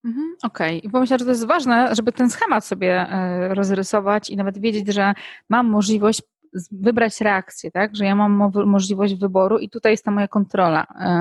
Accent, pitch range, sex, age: native, 190-215 Hz, female, 20-39